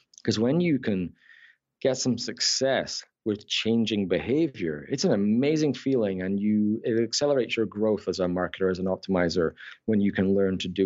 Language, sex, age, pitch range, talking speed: English, male, 30-49, 95-120 Hz, 175 wpm